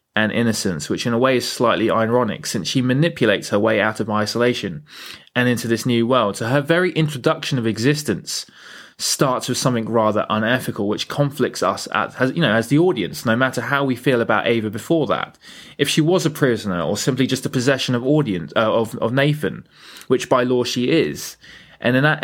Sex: male